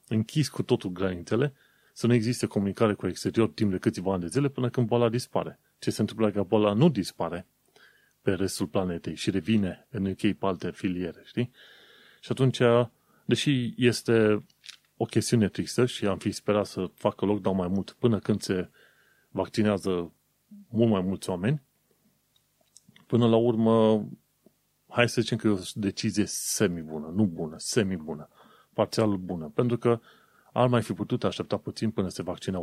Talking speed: 160 wpm